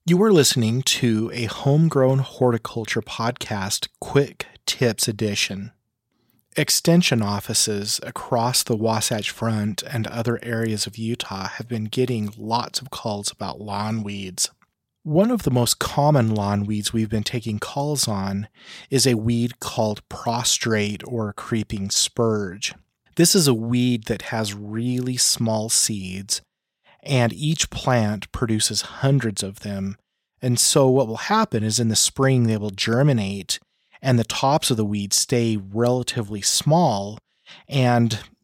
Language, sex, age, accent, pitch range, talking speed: English, male, 30-49, American, 105-125 Hz, 140 wpm